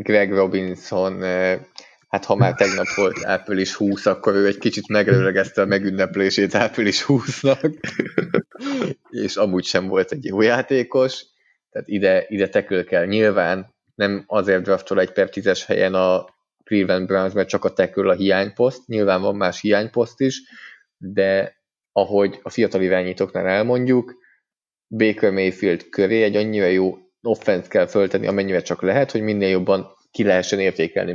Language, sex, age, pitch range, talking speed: Hungarian, male, 20-39, 95-110 Hz, 145 wpm